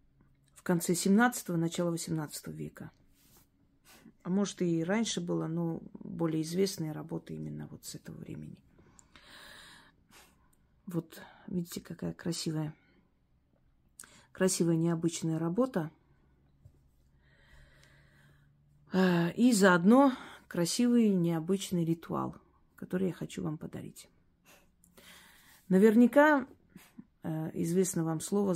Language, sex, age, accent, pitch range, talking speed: Russian, female, 40-59, native, 160-195 Hz, 85 wpm